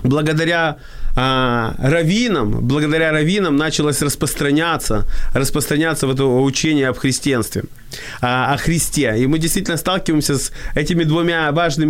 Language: Ukrainian